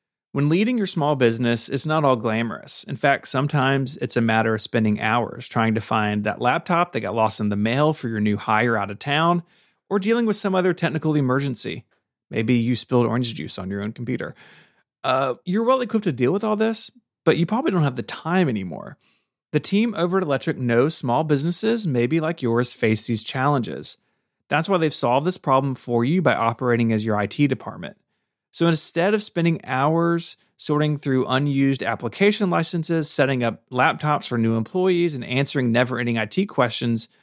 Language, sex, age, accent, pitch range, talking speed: English, male, 30-49, American, 120-170 Hz, 190 wpm